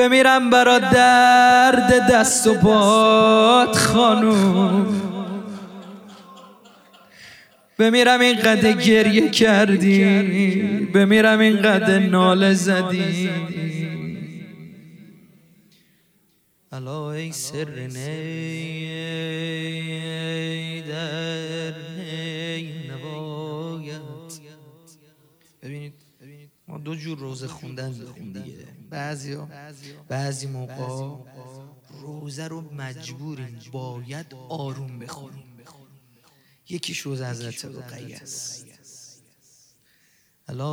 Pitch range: 145-185 Hz